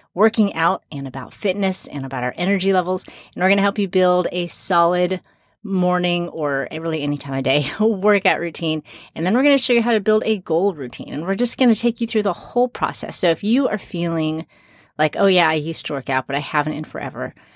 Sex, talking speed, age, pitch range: female, 240 wpm, 30-49, 155-195 Hz